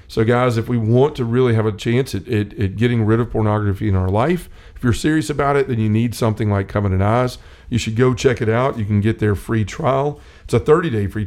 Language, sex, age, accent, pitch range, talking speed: English, male, 40-59, American, 105-120 Hz, 255 wpm